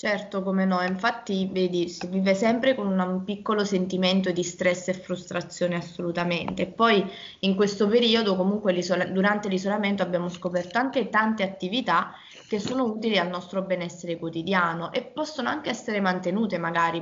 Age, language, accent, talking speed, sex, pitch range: 20-39, Italian, native, 155 wpm, female, 180-205 Hz